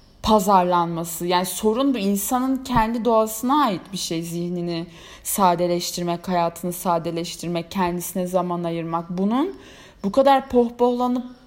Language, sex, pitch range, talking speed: Turkish, female, 190-250 Hz, 110 wpm